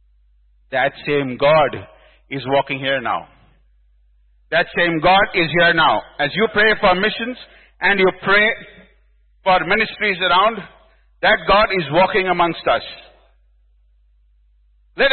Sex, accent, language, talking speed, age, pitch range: male, Indian, English, 125 wpm, 50-69, 185-245 Hz